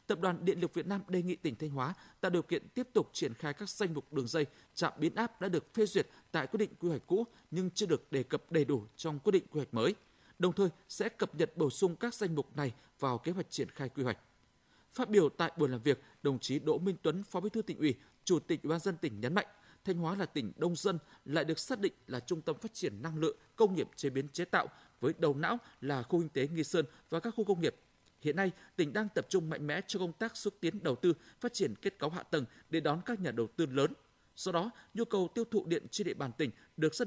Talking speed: 270 wpm